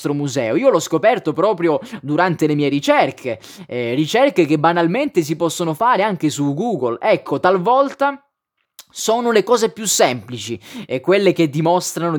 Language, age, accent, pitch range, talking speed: Italian, 20-39, native, 145-195 Hz, 150 wpm